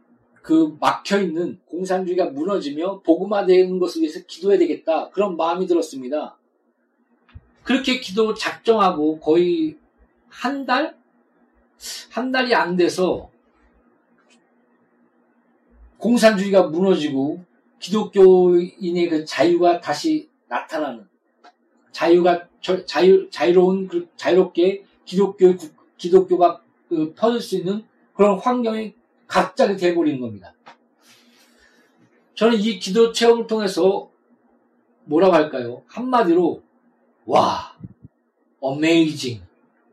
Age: 40-59